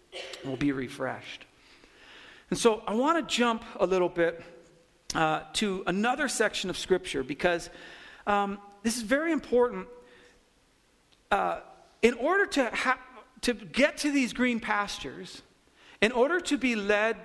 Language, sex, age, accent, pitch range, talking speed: English, male, 50-69, American, 185-245 Hz, 135 wpm